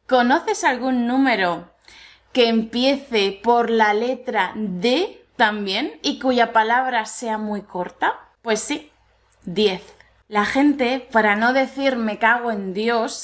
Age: 20-39